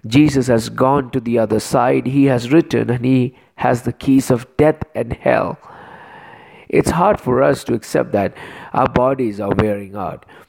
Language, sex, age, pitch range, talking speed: English, male, 50-69, 115-135 Hz, 175 wpm